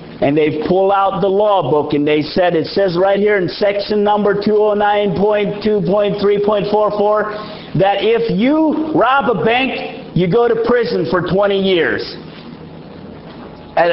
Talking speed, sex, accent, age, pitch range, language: 140 wpm, male, American, 50-69, 180-230 Hz, English